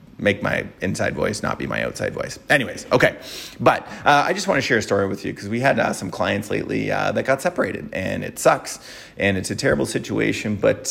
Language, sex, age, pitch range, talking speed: English, male, 30-49, 110-145 Hz, 230 wpm